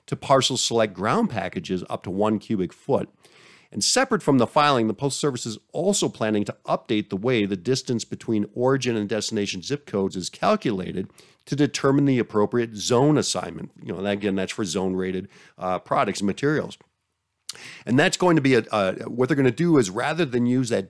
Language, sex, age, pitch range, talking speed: English, male, 50-69, 105-145 Hz, 195 wpm